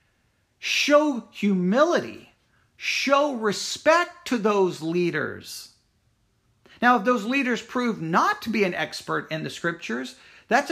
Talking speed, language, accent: 120 wpm, English, American